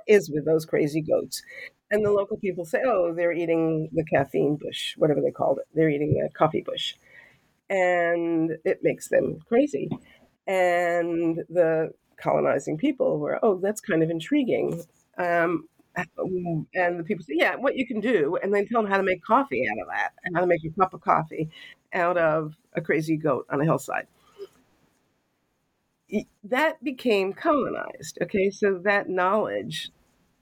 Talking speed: 165 wpm